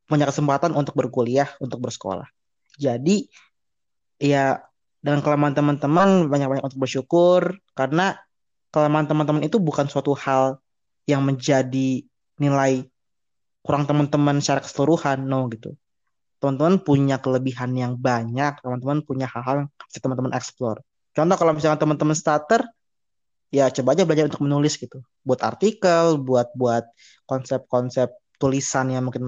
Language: Indonesian